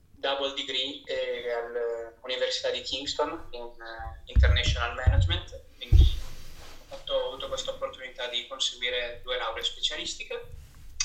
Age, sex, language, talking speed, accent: 20-39, male, Italian, 110 wpm, native